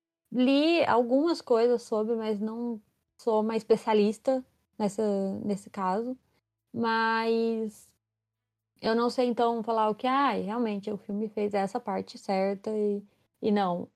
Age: 20-39